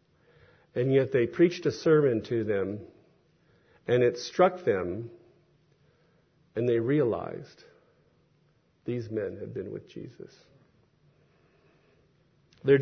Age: 50-69